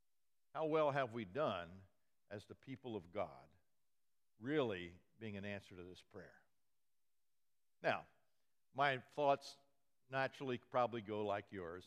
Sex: male